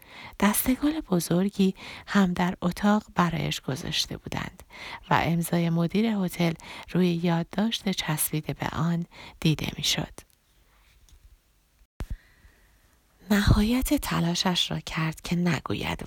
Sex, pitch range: female, 160-185 Hz